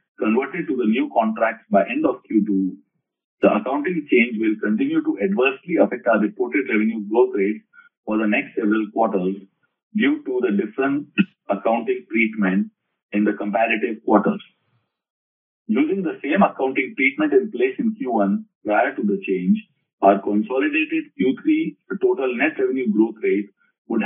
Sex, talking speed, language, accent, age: male, 145 wpm, English, Indian, 50-69